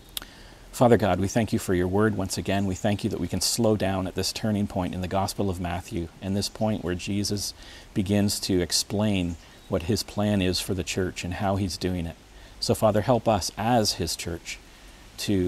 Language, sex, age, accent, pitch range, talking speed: English, male, 40-59, American, 90-110 Hz, 215 wpm